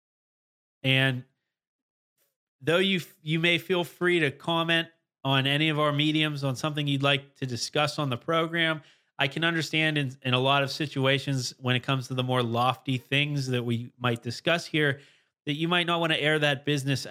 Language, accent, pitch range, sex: English, American, 130-155 Hz, male